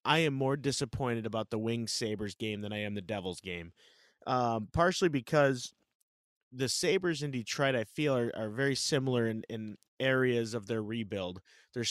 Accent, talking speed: American, 175 wpm